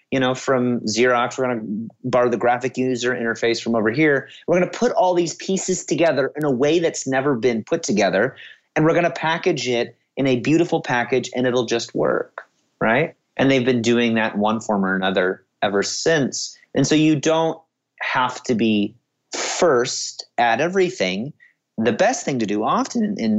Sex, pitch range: male, 120-165 Hz